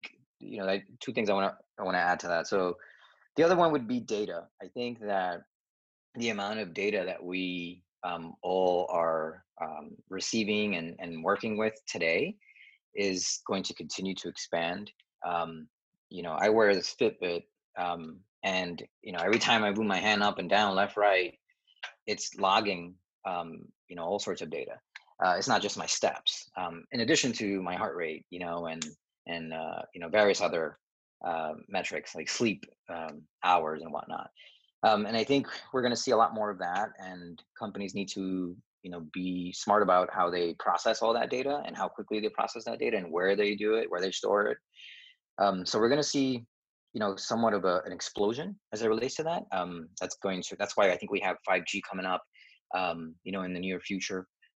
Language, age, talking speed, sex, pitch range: English, 30-49, 210 wpm, male, 90-110 Hz